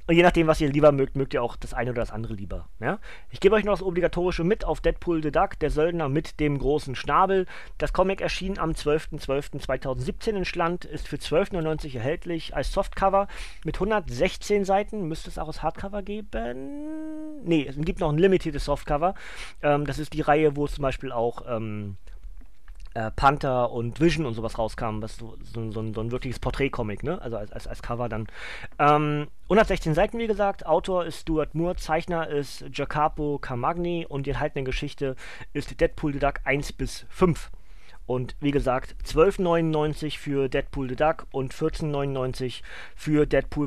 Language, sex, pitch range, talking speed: German, male, 125-165 Hz, 175 wpm